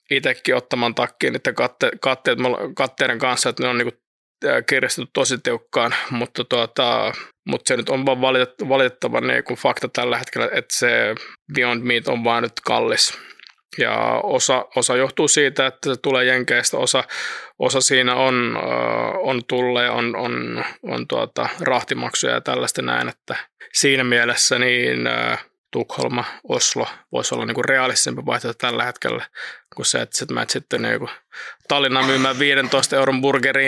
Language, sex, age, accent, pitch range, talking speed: Finnish, male, 20-39, native, 120-135 Hz, 150 wpm